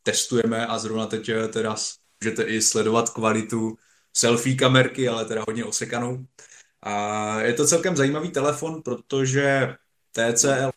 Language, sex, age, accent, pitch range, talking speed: Czech, male, 20-39, native, 110-130 Hz, 135 wpm